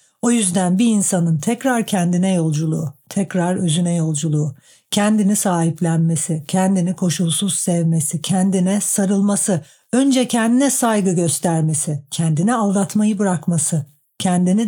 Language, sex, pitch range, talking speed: Turkish, female, 165-200 Hz, 100 wpm